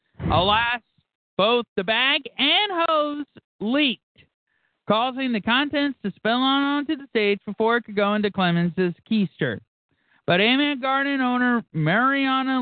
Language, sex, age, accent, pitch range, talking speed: English, male, 50-69, American, 180-235 Hz, 135 wpm